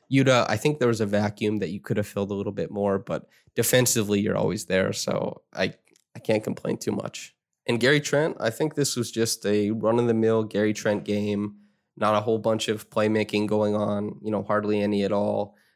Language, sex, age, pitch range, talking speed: English, male, 20-39, 100-115 Hz, 210 wpm